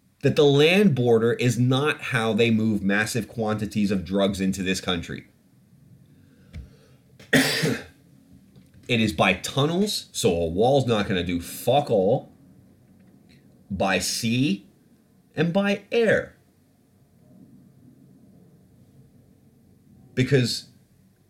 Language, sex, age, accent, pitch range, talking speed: English, male, 30-49, American, 100-135 Hz, 95 wpm